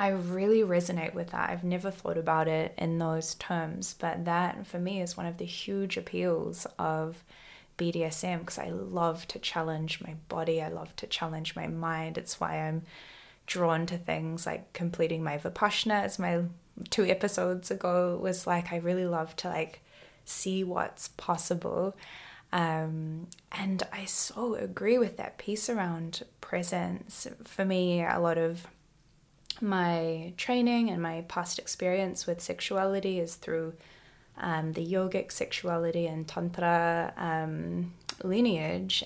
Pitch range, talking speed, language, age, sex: 160-185 Hz, 145 wpm, English, 10-29, female